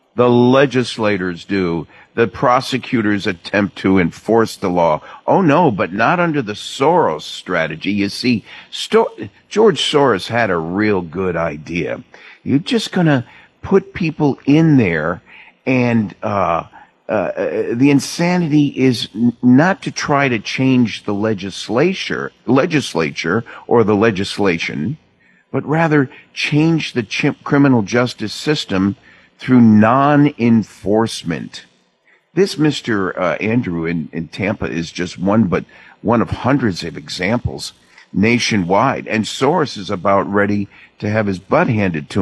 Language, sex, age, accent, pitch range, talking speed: English, male, 50-69, American, 100-140 Hz, 125 wpm